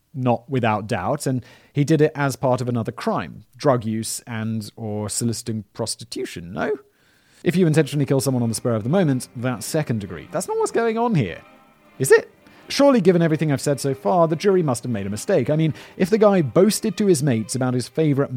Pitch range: 115-160 Hz